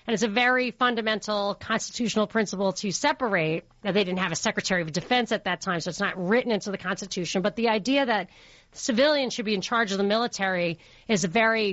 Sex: female